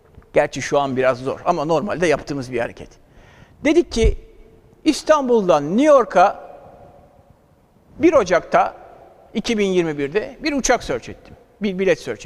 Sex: male